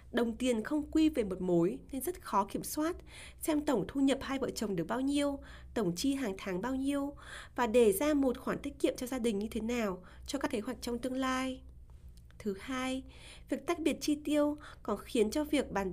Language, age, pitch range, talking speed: Vietnamese, 20-39, 190-265 Hz, 225 wpm